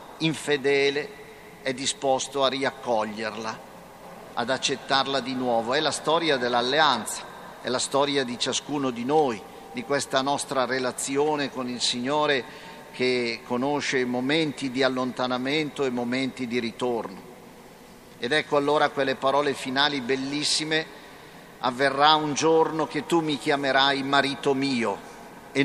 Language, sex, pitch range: Italian, male, 130-150 Hz